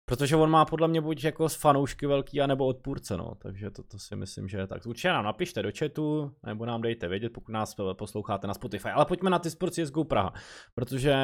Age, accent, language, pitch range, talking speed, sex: 20-39, native, Czech, 120-145 Hz, 225 wpm, male